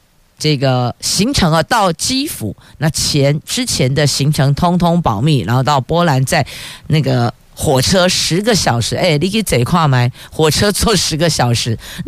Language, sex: Chinese, female